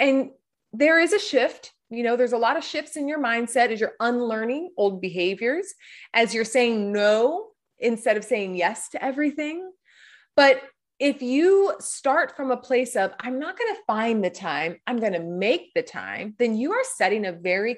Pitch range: 205-300 Hz